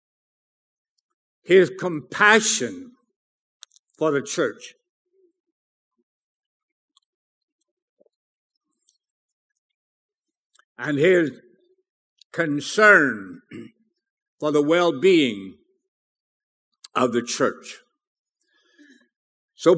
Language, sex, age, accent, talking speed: English, male, 60-79, American, 50 wpm